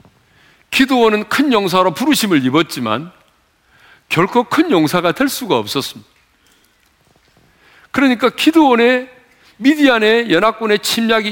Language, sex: Korean, male